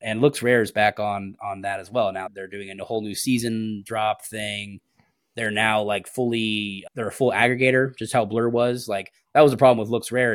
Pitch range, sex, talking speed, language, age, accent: 100-115 Hz, male, 225 wpm, English, 20-39, American